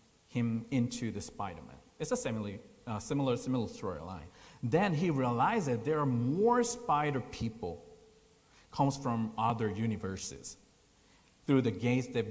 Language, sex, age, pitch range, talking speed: English, male, 50-69, 115-140 Hz, 125 wpm